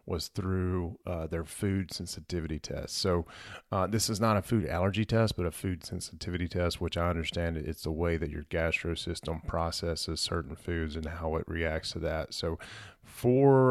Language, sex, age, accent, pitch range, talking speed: English, male, 30-49, American, 80-95 Hz, 185 wpm